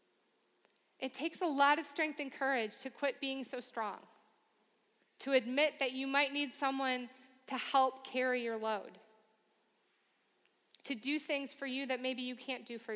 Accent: American